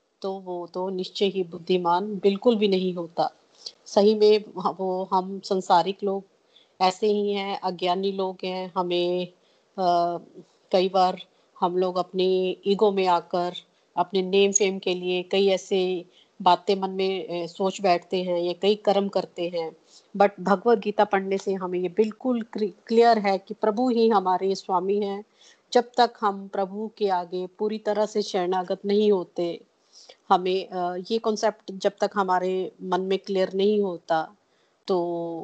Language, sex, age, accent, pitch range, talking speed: Hindi, female, 30-49, native, 180-200 Hz, 155 wpm